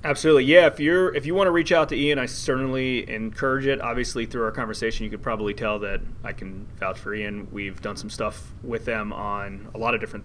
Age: 30-49